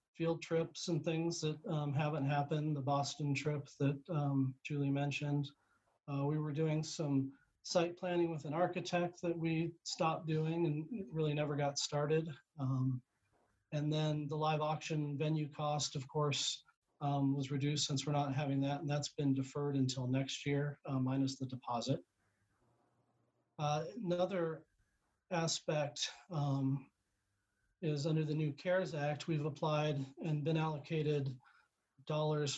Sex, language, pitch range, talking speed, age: male, English, 140-160 Hz, 145 wpm, 40-59